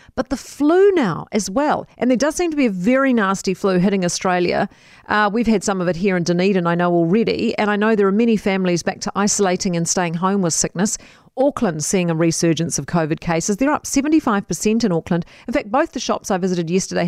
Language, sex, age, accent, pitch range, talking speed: English, female, 40-59, Australian, 185-245 Hz, 230 wpm